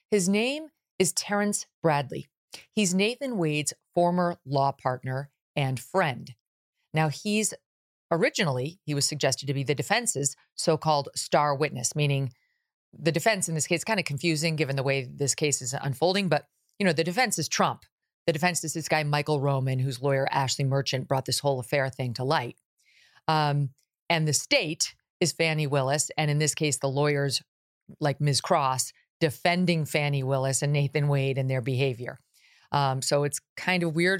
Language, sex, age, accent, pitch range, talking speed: English, female, 40-59, American, 135-175 Hz, 170 wpm